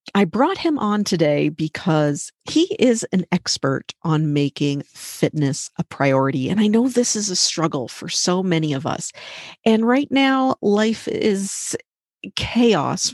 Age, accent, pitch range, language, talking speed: 40-59, American, 150-210 Hz, English, 150 wpm